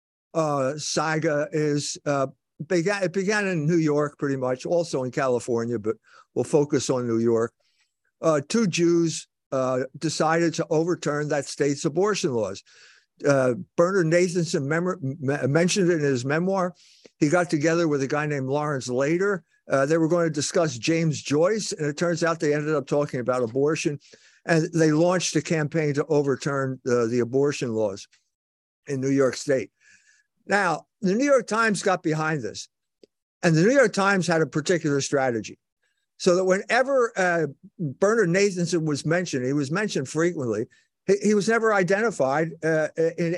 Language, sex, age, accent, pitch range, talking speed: English, male, 50-69, American, 140-180 Hz, 165 wpm